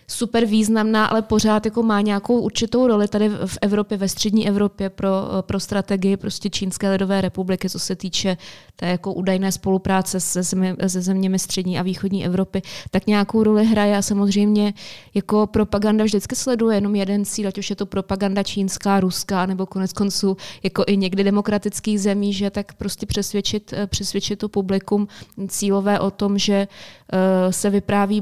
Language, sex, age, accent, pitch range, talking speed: Czech, female, 20-39, native, 190-215 Hz, 165 wpm